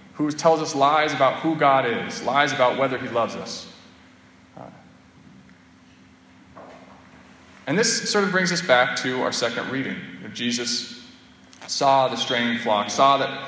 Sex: male